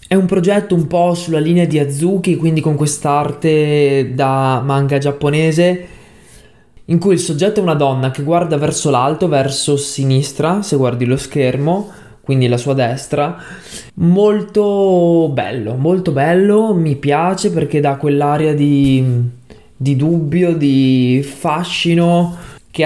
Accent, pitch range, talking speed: native, 135-170 Hz, 135 wpm